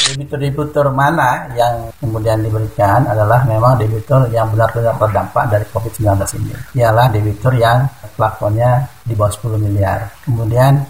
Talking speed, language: 125 wpm, Indonesian